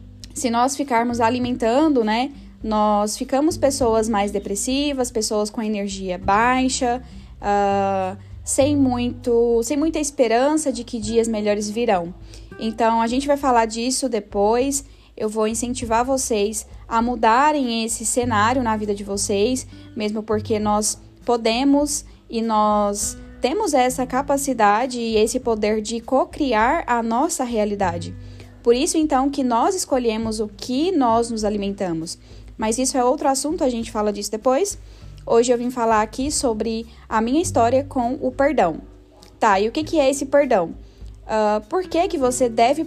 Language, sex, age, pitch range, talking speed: Portuguese, female, 10-29, 210-260 Hz, 145 wpm